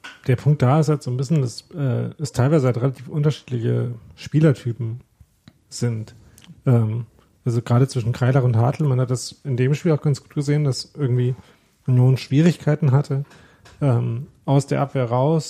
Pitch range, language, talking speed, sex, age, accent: 120-145 Hz, German, 170 wpm, male, 40-59, German